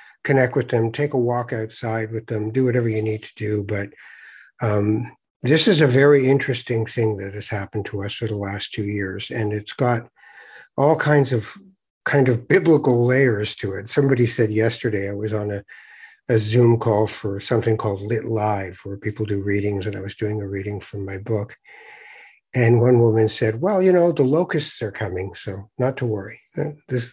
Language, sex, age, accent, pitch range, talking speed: English, male, 60-79, American, 105-135 Hz, 195 wpm